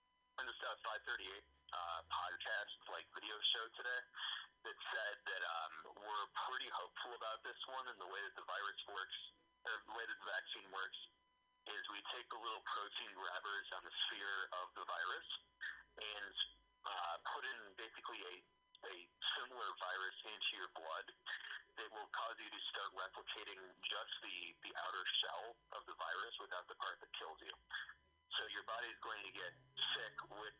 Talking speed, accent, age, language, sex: 175 wpm, American, 30-49, English, male